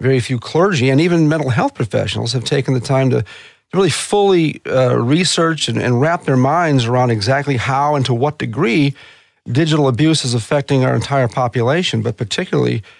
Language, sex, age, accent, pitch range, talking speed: English, male, 40-59, American, 125-165 Hz, 175 wpm